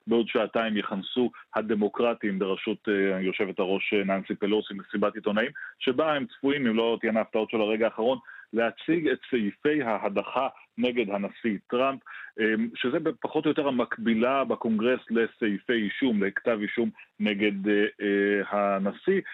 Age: 30-49